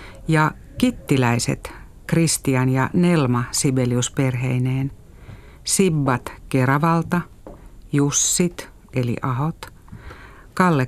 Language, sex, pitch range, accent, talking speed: Finnish, female, 130-160 Hz, native, 70 wpm